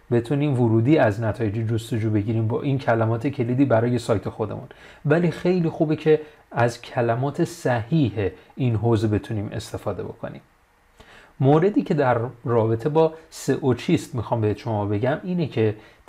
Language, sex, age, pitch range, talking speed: Persian, male, 30-49, 115-150 Hz, 145 wpm